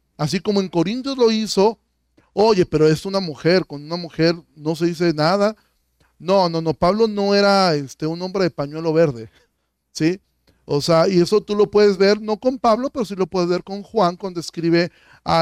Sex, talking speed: male, 200 wpm